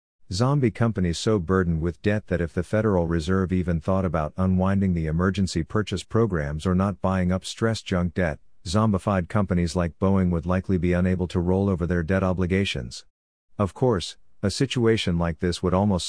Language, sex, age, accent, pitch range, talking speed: English, male, 50-69, American, 85-100 Hz, 180 wpm